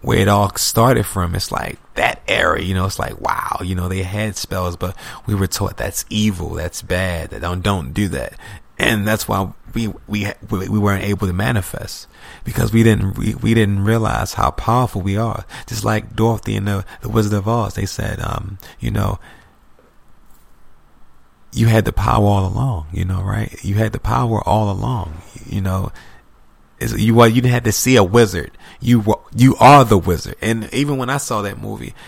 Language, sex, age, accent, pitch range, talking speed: English, male, 30-49, American, 95-115 Hz, 195 wpm